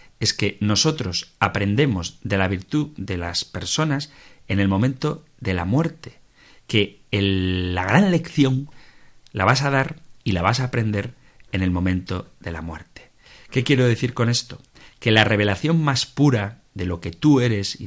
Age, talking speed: 40-59, 175 wpm